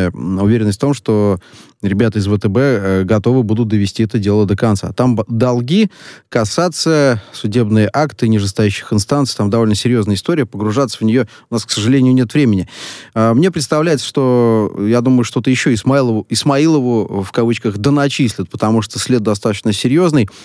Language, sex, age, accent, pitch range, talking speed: Russian, male, 20-39, native, 105-130 Hz, 150 wpm